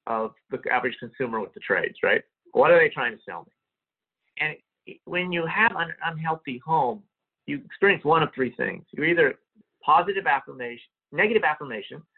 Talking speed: 170 wpm